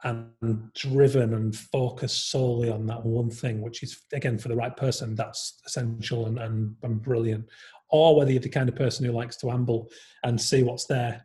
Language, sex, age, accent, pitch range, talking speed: English, male, 30-49, British, 120-140 Hz, 195 wpm